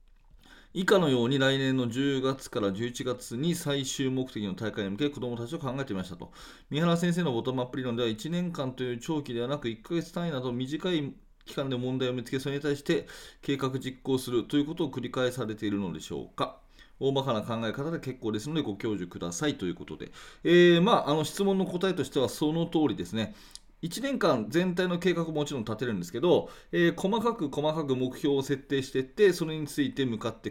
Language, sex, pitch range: Japanese, male, 120-165 Hz